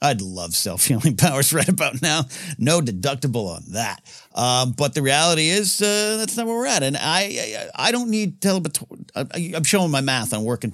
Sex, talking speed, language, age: male, 195 wpm, English, 50-69